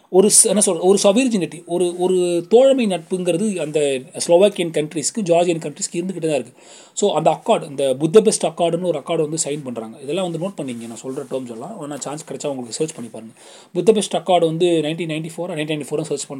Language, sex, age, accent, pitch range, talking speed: Tamil, male, 30-49, native, 145-195 Hz, 185 wpm